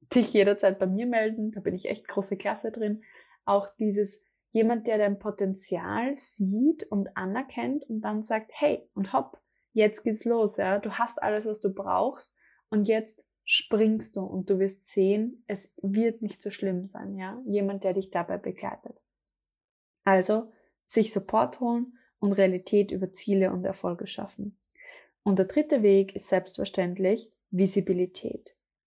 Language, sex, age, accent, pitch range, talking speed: German, female, 20-39, German, 195-230 Hz, 155 wpm